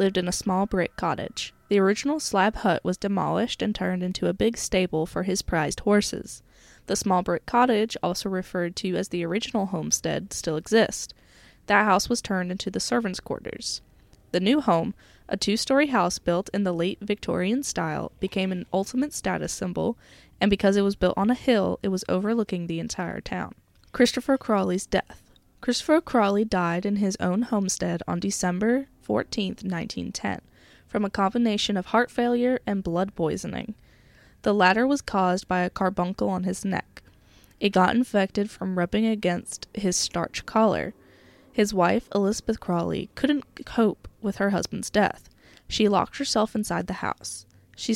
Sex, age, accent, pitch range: female, 10-29, American, 185-225 Hz